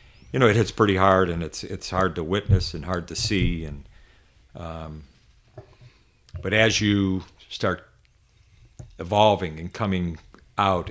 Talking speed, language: 145 wpm, English